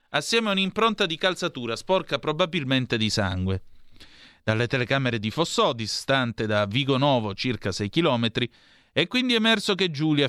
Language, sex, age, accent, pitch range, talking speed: Italian, male, 30-49, native, 110-150 Hz, 145 wpm